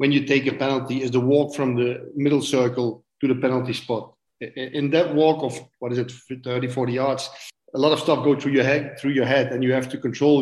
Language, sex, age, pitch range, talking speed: English, male, 40-59, 130-150 Hz, 240 wpm